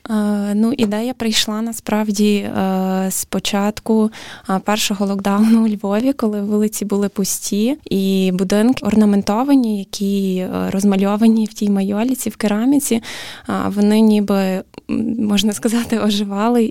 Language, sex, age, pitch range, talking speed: Ukrainian, female, 20-39, 200-225 Hz, 105 wpm